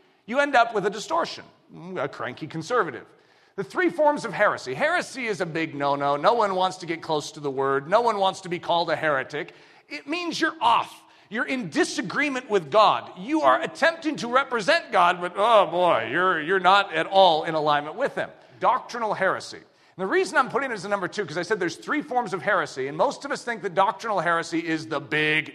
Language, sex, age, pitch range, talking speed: English, male, 40-59, 185-285 Hz, 220 wpm